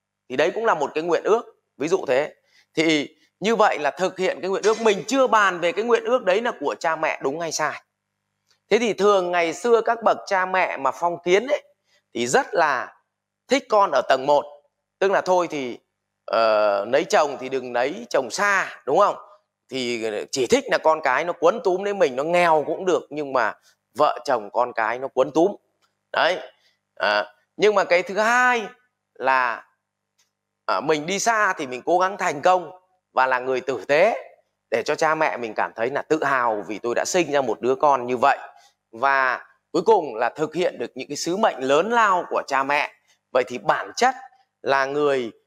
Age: 20-39